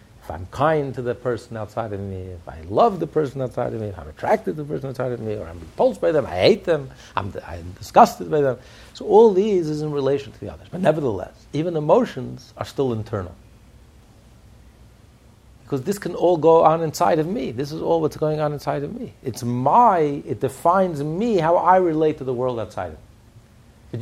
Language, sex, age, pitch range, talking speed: English, male, 60-79, 120-175 Hz, 215 wpm